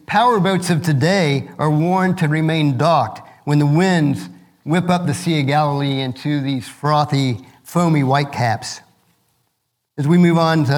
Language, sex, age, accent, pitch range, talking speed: English, male, 50-69, American, 140-185 Hz, 160 wpm